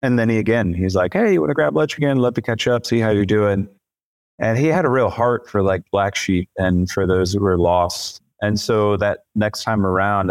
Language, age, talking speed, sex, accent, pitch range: English, 30-49, 250 wpm, male, American, 100-120 Hz